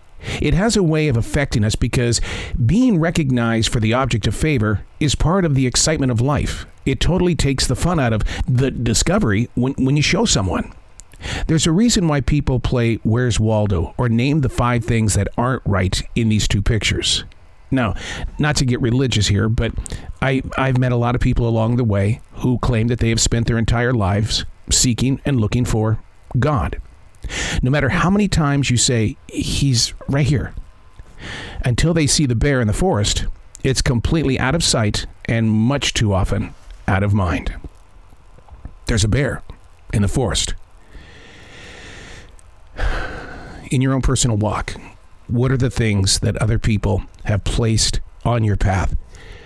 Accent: American